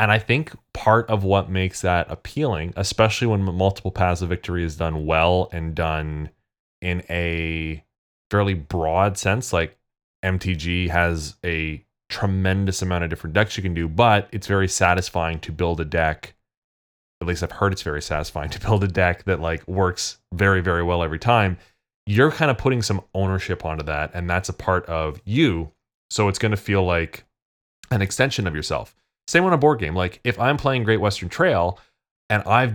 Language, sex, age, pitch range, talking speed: English, male, 20-39, 85-105 Hz, 185 wpm